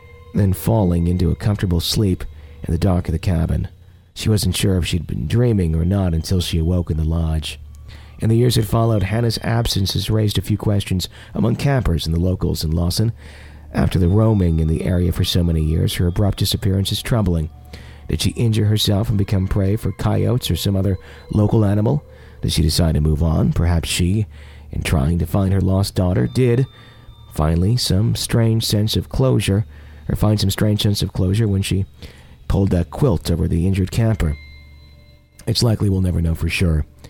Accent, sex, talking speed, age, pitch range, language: American, male, 195 wpm, 40-59, 80-105 Hz, English